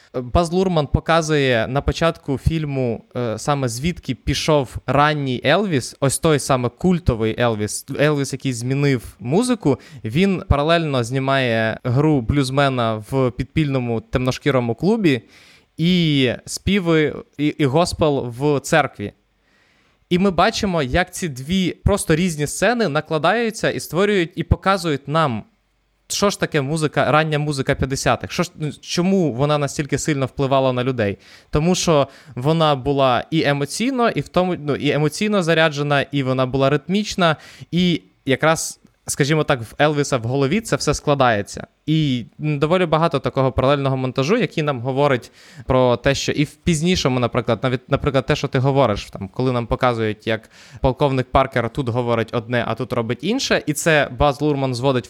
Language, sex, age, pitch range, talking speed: Ukrainian, male, 20-39, 125-155 Hz, 150 wpm